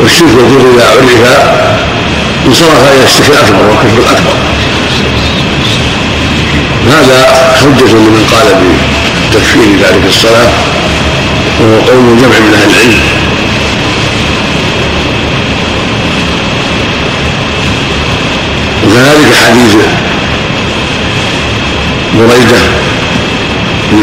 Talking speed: 70 wpm